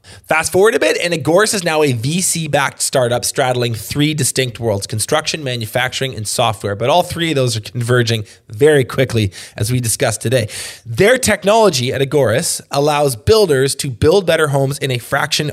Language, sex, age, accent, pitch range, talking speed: English, male, 20-39, American, 120-155 Hz, 175 wpm